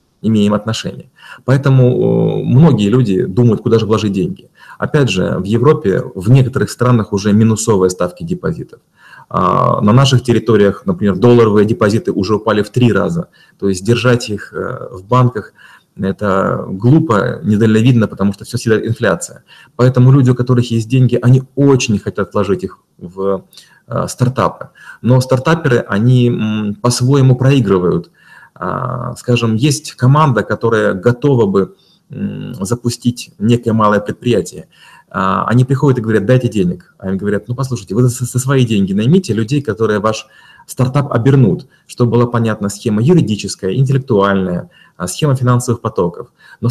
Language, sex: Russian, male